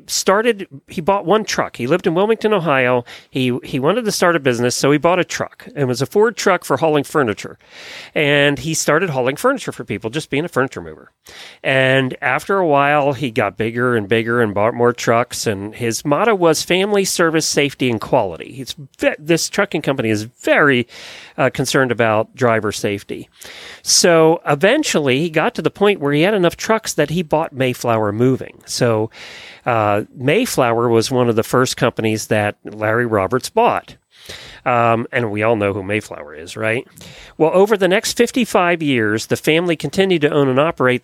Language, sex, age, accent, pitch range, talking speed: English, male, 40-59, American, 120-170 Hz, 185 wpm